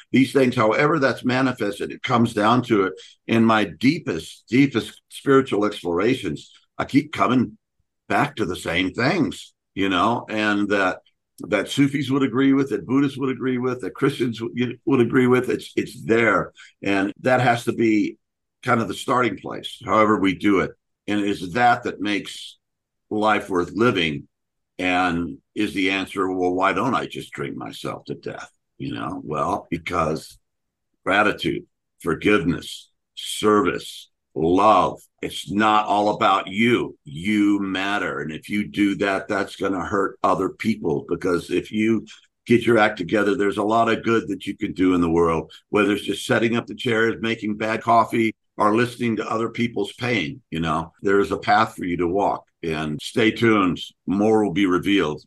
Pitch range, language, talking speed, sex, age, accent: 95-120 Hz, English, 175 wpm, male, 60-79, American